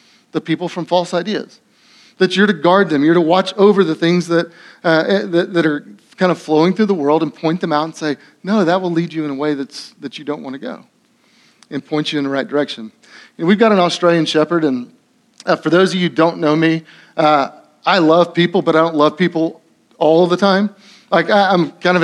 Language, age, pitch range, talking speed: English, 30-49, 160-195 Hz, 235 wpm